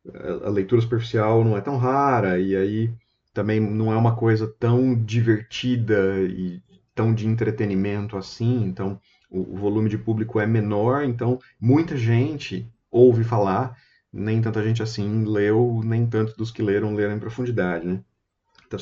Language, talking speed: Portuguese, 155 wpm